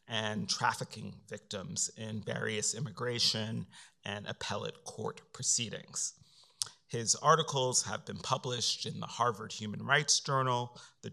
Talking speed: 120 wpm